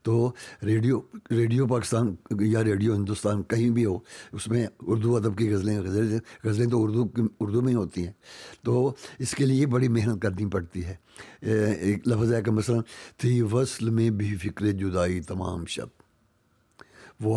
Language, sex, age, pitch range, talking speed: Urdu, male, 60-79, 100-120 Hz, 165 wpm